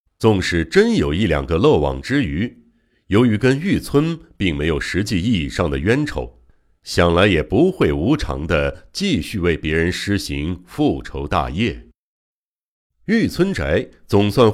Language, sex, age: Chinese, male, 60-79